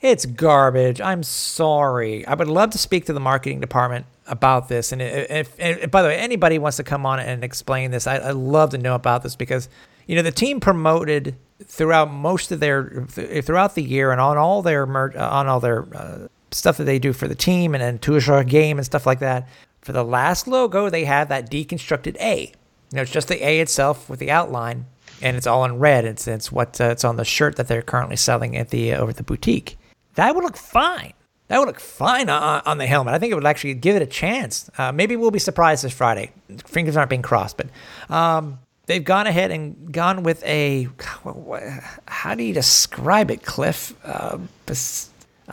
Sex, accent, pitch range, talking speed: male, American, 130-170 Hz, 220 wpm